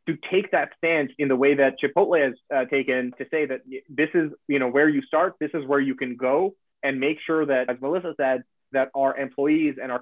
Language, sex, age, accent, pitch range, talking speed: English, male, 30-49, American, 130-150 Hz, 235 wpm